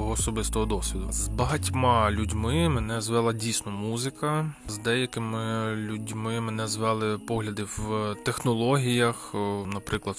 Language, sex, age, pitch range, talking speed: Ukrainian, male, 20-39, 105-125 Hz, 105 wpm